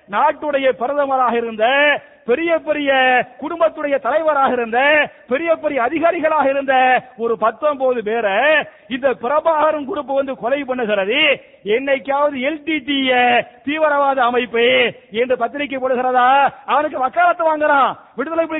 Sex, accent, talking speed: male, Indian, 105 wpm